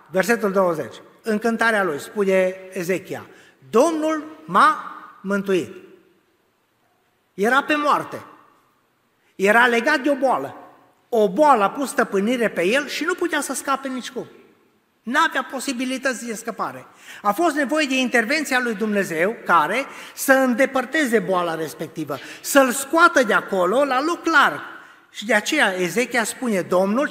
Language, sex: Romanian, male